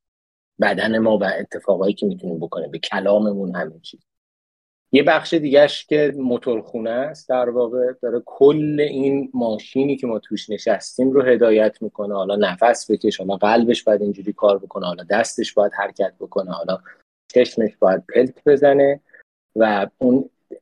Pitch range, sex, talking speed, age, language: 105-130 Hz, male, 145 wpm, 30-49, Persian